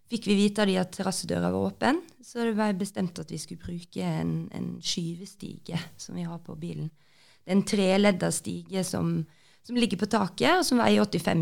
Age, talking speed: 30-49, 200 wpm